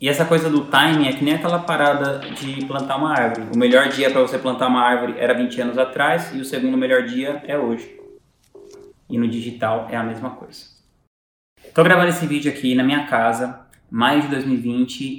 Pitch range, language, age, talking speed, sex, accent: 120-155 Hz, Portuguese, 20-39, 200 wpm, male, Brazilian